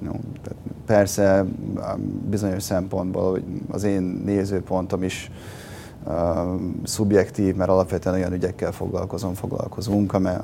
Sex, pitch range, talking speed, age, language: male, 90-105 Hz, 105 wpm, 30-49, Hungarian